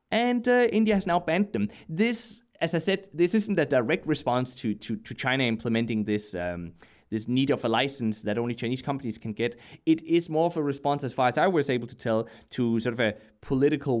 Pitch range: 120-170 Hz